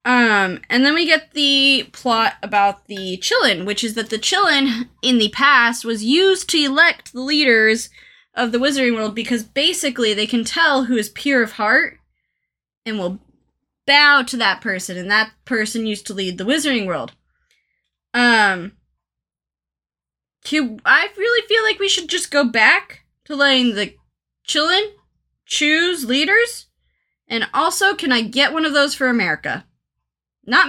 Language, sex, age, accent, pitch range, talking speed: English, female, 20-39, American, 185-275 Hz, 160 wpm